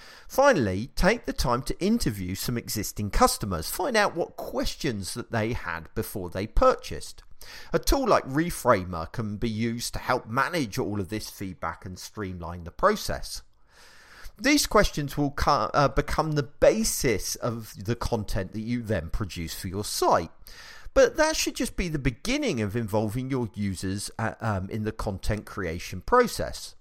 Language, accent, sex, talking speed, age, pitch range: English, British, male, 160 wpm, 40-59, 105-155 Hz